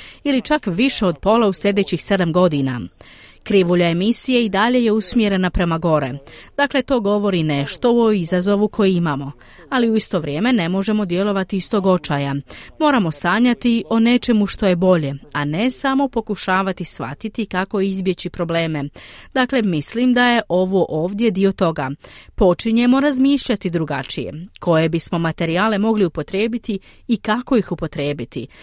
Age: 30-49